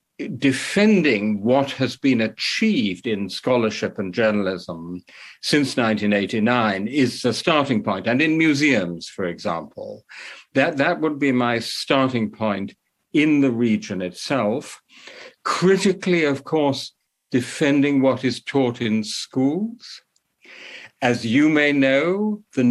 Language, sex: English, male